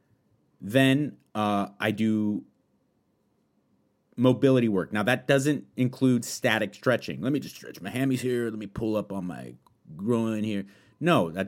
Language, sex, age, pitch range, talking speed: English, male, 30-49, 95-120 Hz, 150 wpm